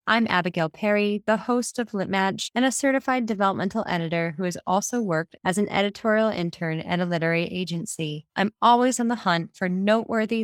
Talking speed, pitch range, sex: 180 wpm, 170-220 Hz, female